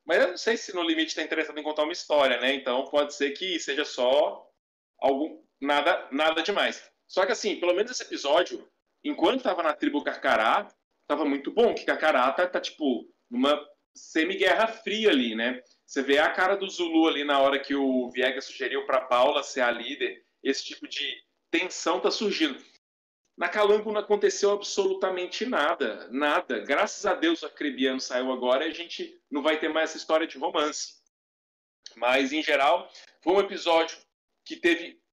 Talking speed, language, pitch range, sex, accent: 180 wpm, Portuguese, 135-215 Hz, male, Brazilian